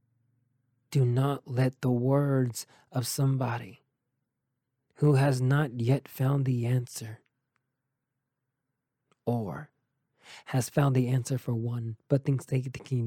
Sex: male